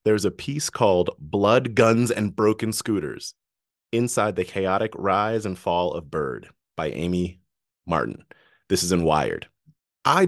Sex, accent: male, American